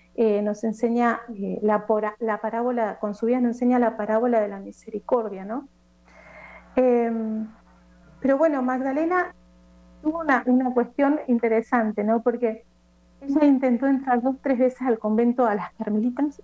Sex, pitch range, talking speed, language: female, 210-255 Hz, 150 wpm, Spanish